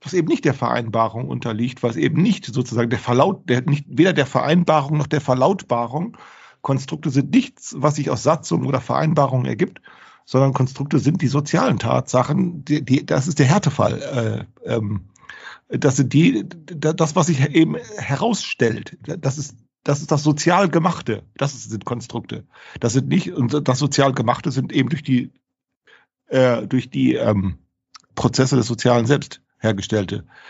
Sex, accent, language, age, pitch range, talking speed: male, German, German, 50-69, 120-160 Hz, 160 wpm